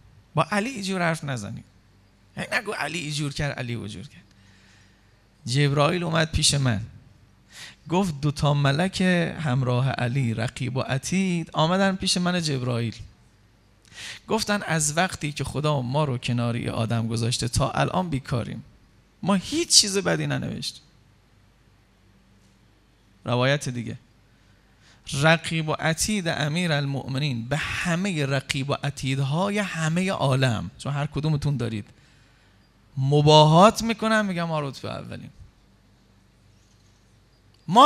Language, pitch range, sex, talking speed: Persian, 110-170 Hz, male, 115 wpm